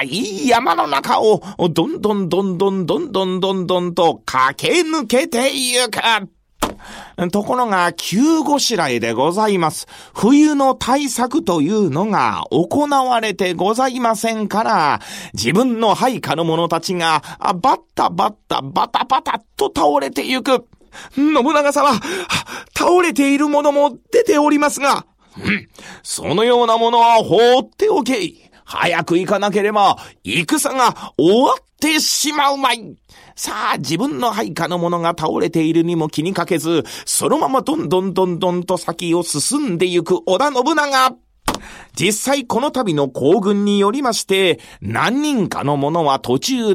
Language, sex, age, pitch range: Japanese, male, 40-59, 175-265 Hz